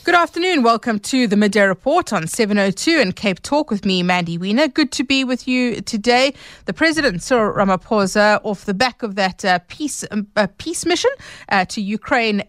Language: English